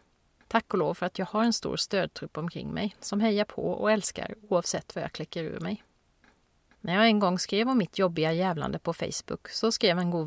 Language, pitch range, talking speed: Swedish, 180-230 Hz, 220 wpm